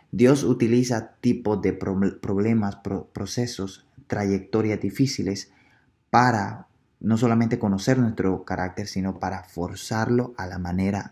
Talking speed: 110 wpm